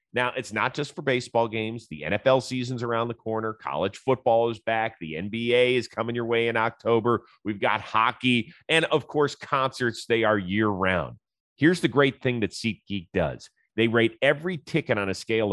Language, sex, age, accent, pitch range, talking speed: English, male, 30-49, American, 110-140 Hz, 190 wpm